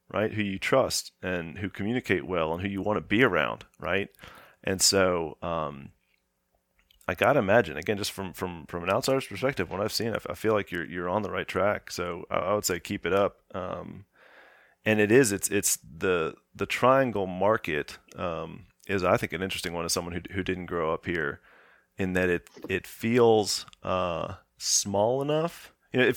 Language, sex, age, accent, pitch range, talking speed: English, male, 30-49, American, 85-105 Hz, 200 wpm